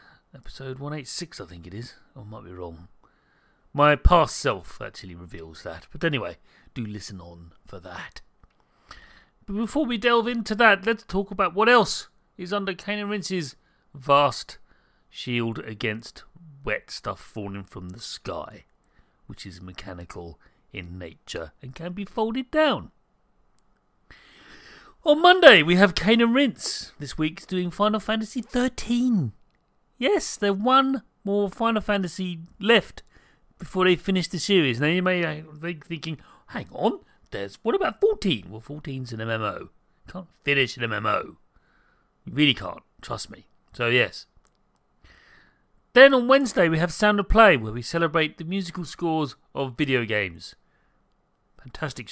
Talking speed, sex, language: 145 wpm, male, English